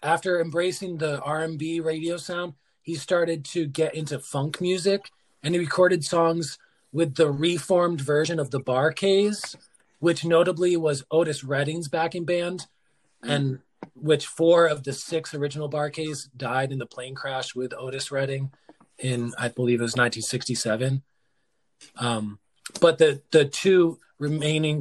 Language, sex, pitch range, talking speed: English, male, 140-170 Hz, 150 wpm